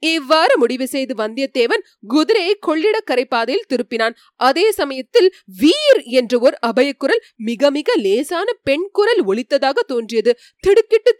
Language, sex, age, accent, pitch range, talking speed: Tamil, female, 30-49, native, 240-395 Hz, 105 wpm